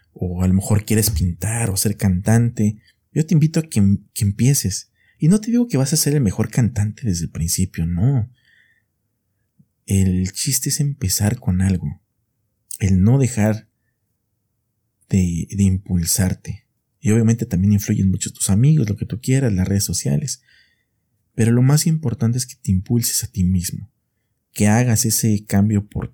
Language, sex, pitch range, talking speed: Spanish, male, 95-120 Hz, 170 wpm